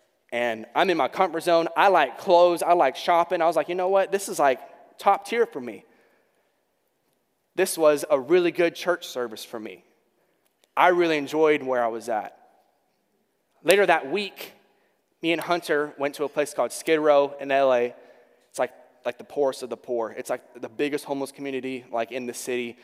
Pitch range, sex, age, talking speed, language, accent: 125-180 Hz, male, 20-39, 195 wpm, English, American